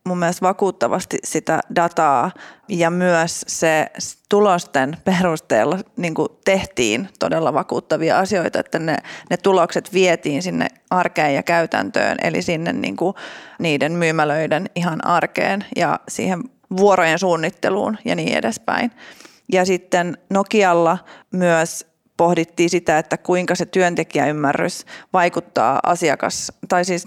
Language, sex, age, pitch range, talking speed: Finnish, female, 30-49, 170-195 Hz, 115 wpm